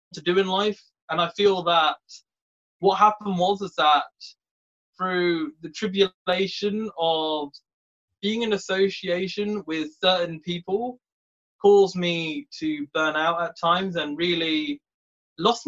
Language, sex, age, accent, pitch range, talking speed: English, male, 20-39, British, 170-215 Hz, 125 wpm